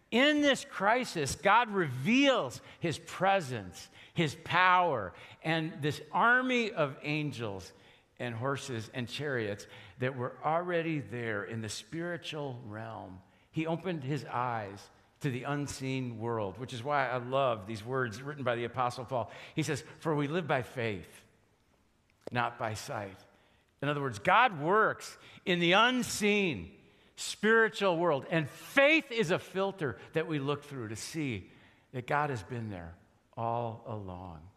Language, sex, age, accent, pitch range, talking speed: English, male, 50-69, American, 110-155 Hz, 145 wpm